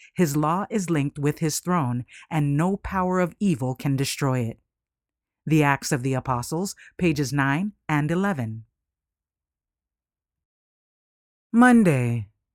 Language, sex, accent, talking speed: English, female, American, 120 wpm